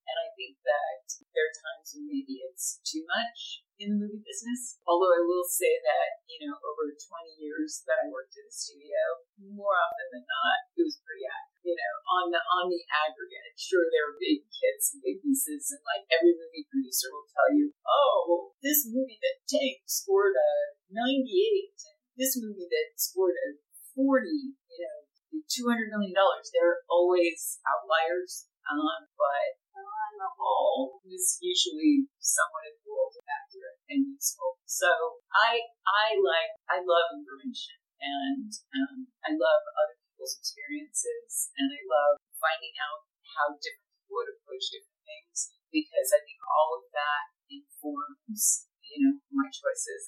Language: English